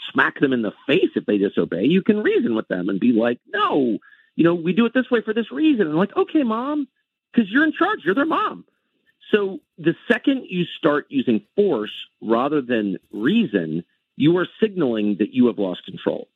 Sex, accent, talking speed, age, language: male, American, 205 wpm, 40-59, English